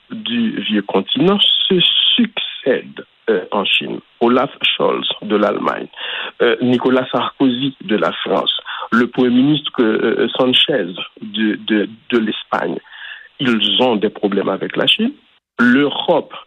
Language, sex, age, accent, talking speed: French, male, 60-79, French, 120 wpm